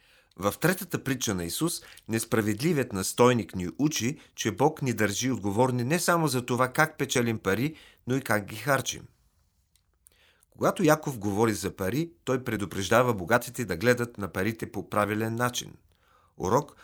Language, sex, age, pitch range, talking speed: Bulgarian, male, 40-59, 100-130 Hz, 150 wpm